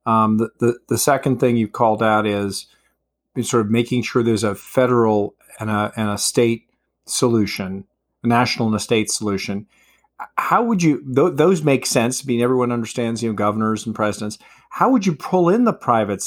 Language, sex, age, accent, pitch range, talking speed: English, male, 40-59, American, 105-125 Hz, 190 wpm